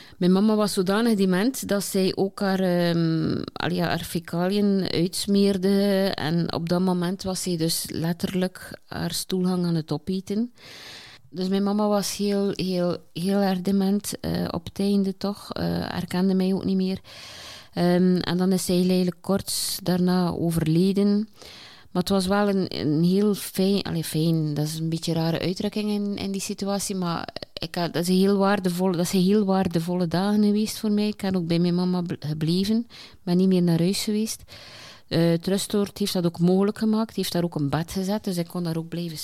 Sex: female